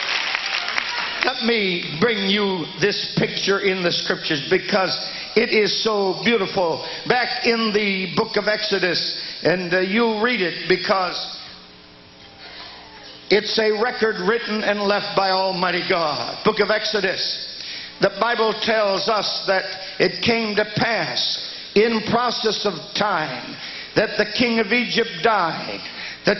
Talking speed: 130 wpm